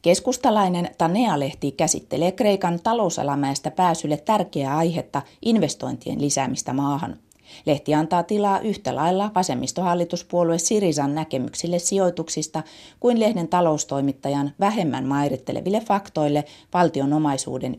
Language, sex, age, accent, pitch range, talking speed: Finnish, female, 30-49, native, 145-180 Hz, 90 wpm